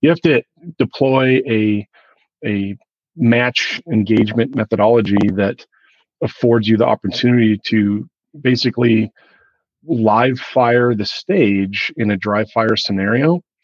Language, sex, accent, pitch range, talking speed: English, male, American, 105-125 Hz, 110 wpm